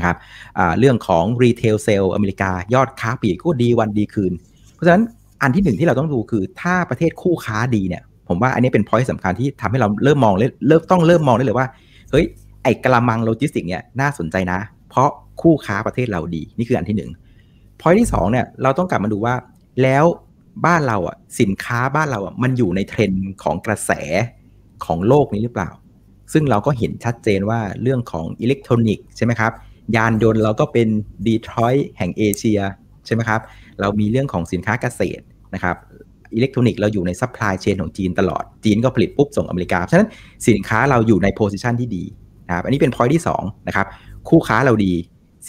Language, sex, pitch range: Thai, male, 100-130 Hz